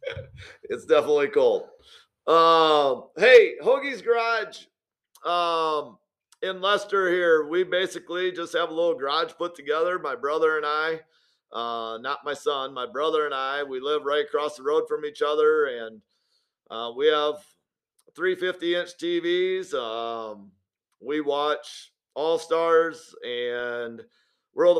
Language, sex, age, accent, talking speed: English, male, 50-69, American, 135 wpm